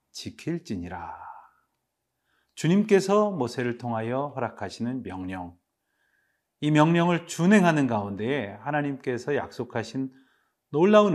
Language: Korean